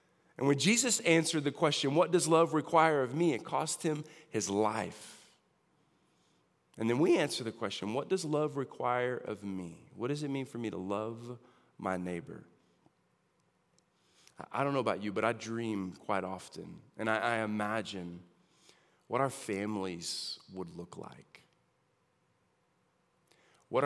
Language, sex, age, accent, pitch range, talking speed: English, male, 40-59, American, 100-150 Hz, 150 wpm